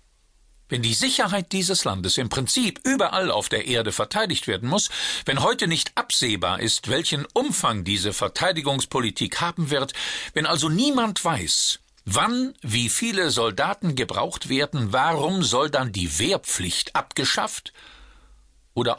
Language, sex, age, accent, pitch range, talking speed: German, male, 50-69, German, 115-175 Hz, 135 wpm